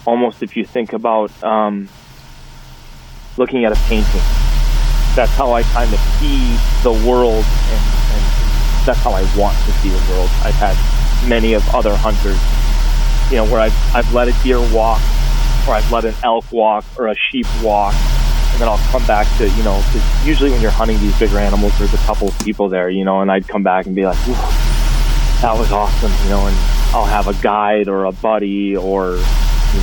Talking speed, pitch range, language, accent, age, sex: 200 wpm, 95-115 Hz, English, American, 20-39, male